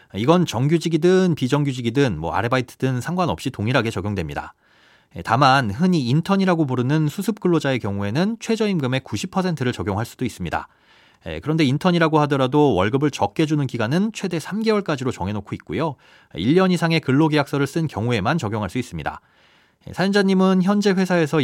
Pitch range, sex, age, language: 120-175 Hz, male, 30-49, Korean